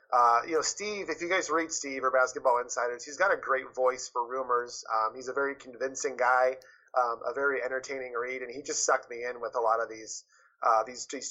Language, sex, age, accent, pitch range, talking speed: English, male, 30-49, American, 120-165 Hz, 230 wpm